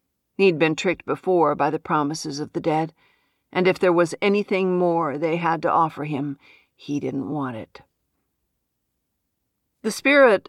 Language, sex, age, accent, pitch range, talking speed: English, female, 50-69, American, 145-180 Hz, 155 wpm